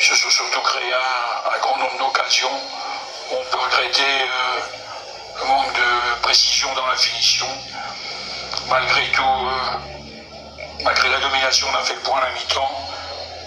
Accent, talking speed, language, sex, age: French, 165 wpm, French, male, 60-79